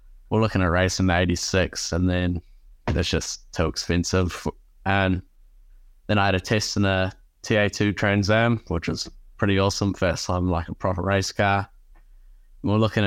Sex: male